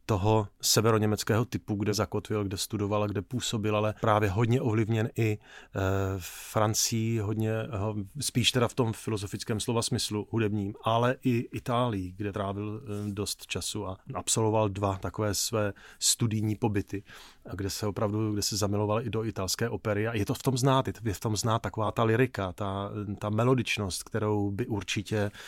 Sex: male